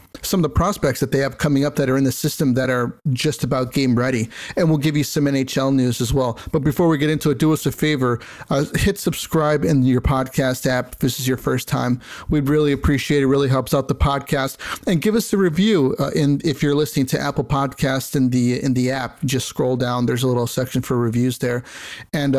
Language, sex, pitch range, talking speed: English, male, 130-155 Hz, 245 wpm